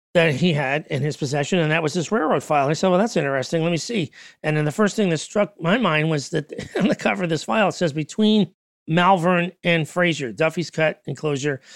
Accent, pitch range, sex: American, 150-185 Hz, male